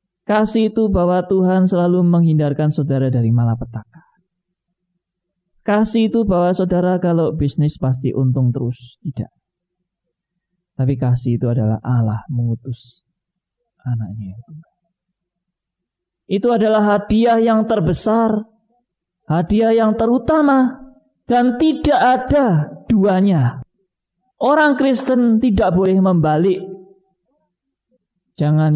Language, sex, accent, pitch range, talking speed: Indonesian, male, native, 120-185 Hz, 90 wpm